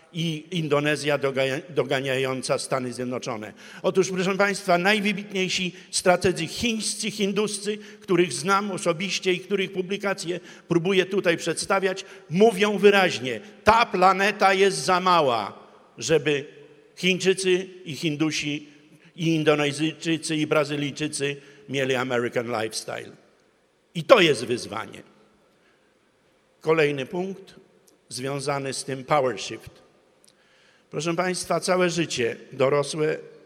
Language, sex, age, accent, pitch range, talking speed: Polish, male, 50-69, native, 140-185 Hz, 100 wpm